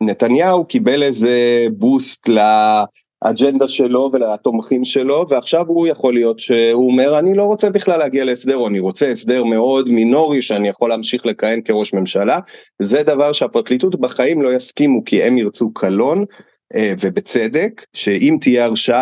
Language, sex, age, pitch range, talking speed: Hebrew, male, 30-49, 110-160 Hz, 145 wpm